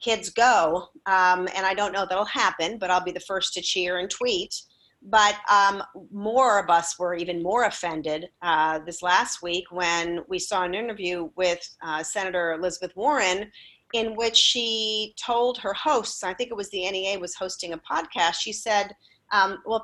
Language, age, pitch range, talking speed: English, 40-59, 165-215 Hz, 185 wpm